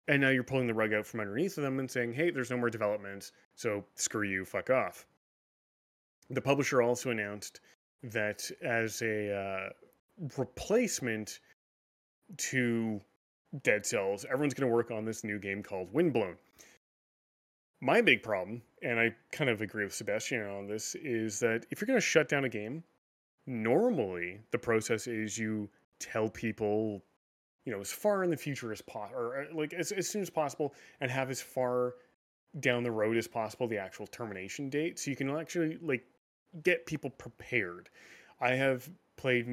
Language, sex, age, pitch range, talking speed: English, male, 30-49, 105-135 Hz, 175 wpm